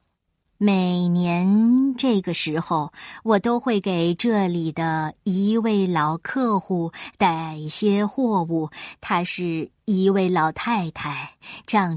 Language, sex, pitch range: Chinese, male, 170-240 Hz